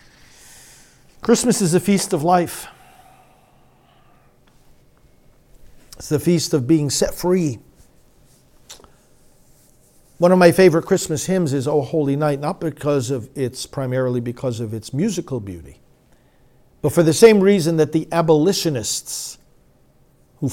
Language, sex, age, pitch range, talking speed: English, male, 50-69, 135-180 Hz, 125 wpm